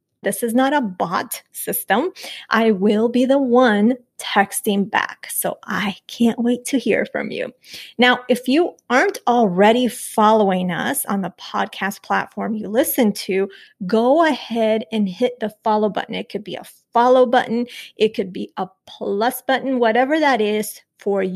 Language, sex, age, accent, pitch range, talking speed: English, female, 30-49, American, 205-255 Hz, 165 wpm